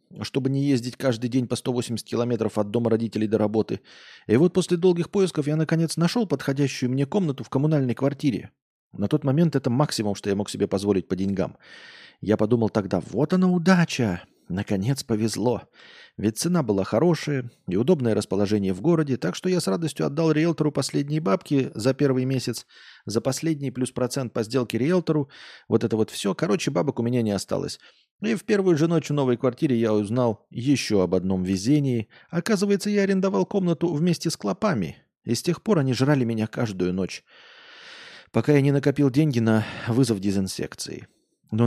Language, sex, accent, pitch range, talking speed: Russian, male, native, 110-160 Hz, 180 wpm